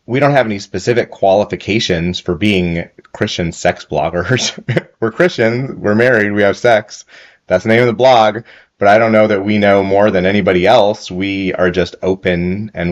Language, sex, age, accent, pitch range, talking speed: English, male, 30-49, American, 85-100 Hz, 185 wpm